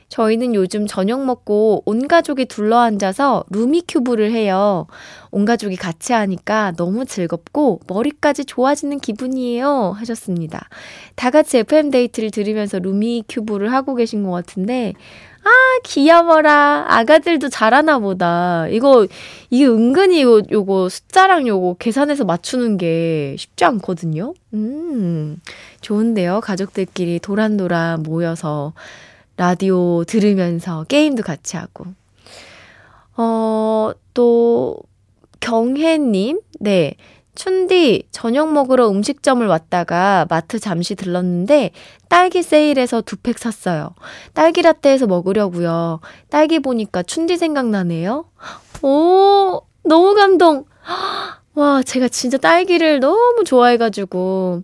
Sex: female